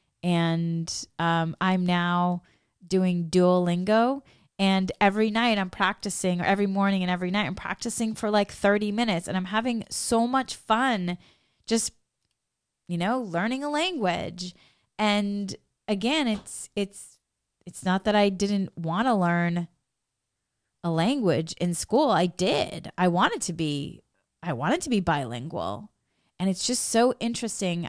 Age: 20-39